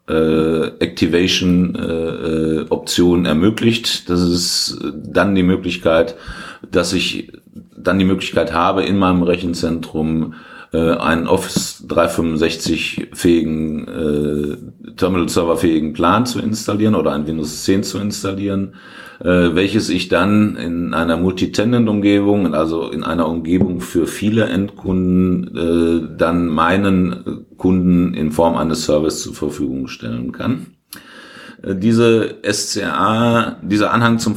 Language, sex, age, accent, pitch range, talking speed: German, male, 50-69, German, 80-95 Hz, 105 wpm